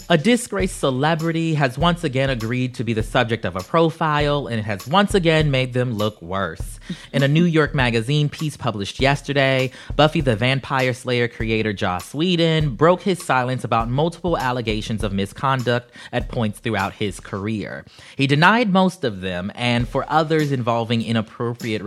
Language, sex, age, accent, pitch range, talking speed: English, male, 30-49, American, 110-145 Hz, 165 wpm